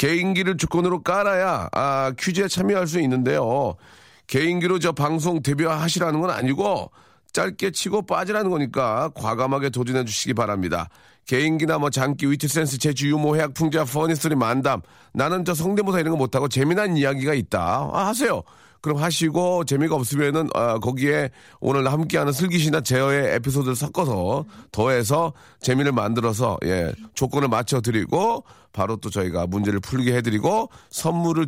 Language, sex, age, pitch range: Korean, male, 40-59, 120-165 Hz